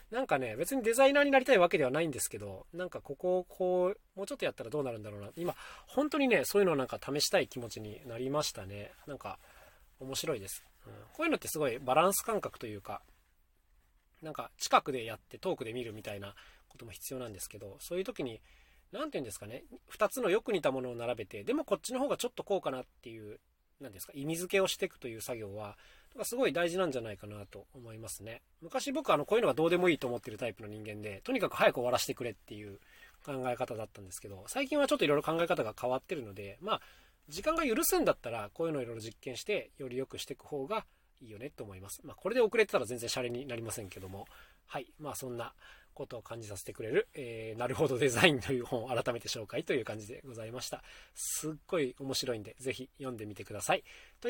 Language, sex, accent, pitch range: Japanese, male, native, 110-180 Hz